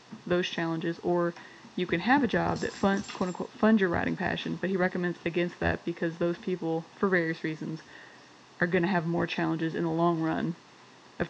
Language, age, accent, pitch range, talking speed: English, 20-39, American, 170-195 Hz, 200 wpm